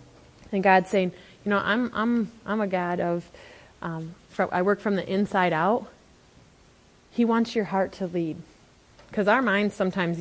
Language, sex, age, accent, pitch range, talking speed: English, female, 20-39, American, 180-230 Hz, 165 wpm